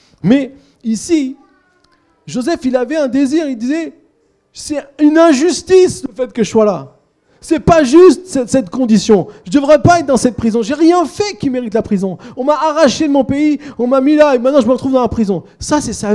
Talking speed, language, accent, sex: 220 wpm, French, French, male